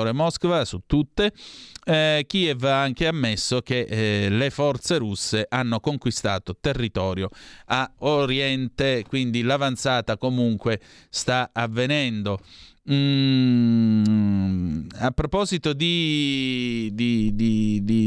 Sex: male